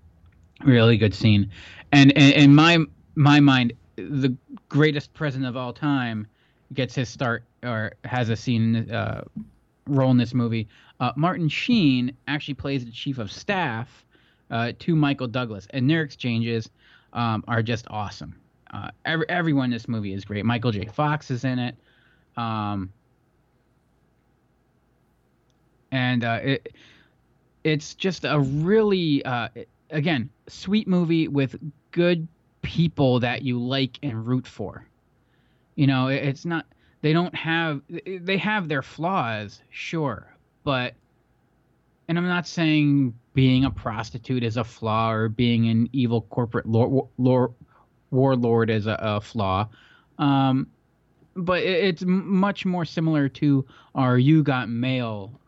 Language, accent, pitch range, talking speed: English, American, 115-145 Hz, 130 wpm